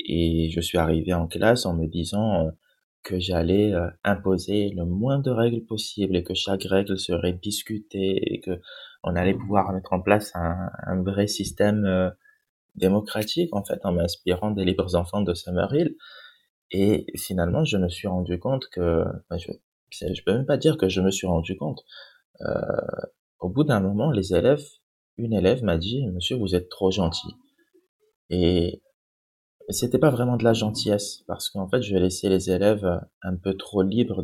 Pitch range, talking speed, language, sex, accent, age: 90-120 Hz, 175 wpm, French, male, French, 20-39